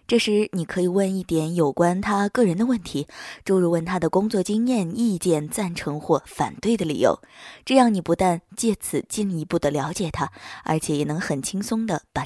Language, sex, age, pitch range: Chinese, female, 20-39, 160-210 Hz